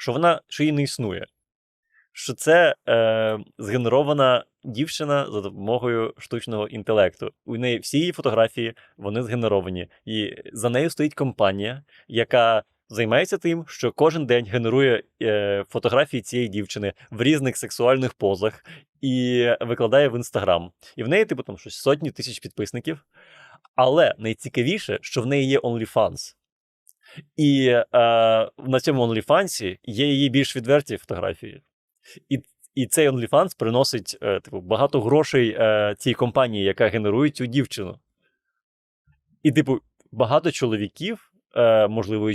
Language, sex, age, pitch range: Ukrainian, male, 20-39, 110-140 Hz